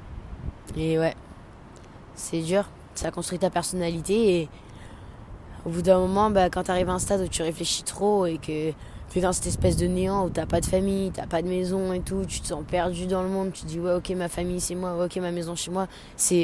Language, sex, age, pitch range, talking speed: French, female, 20-39, 155-180 Hz, 240 wpm